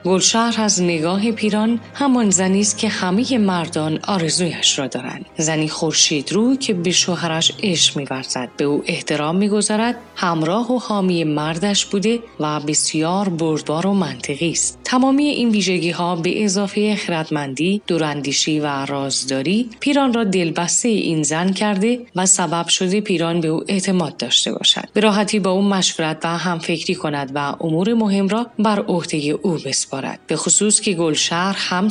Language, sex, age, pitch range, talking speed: Persian, female, 30-49, 155-210 Hz, 150 wpm